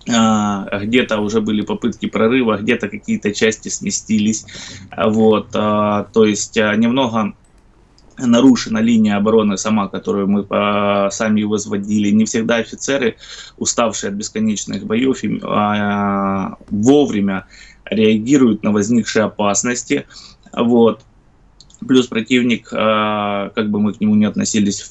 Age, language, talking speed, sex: 20-39, Russian, 105 wpm, male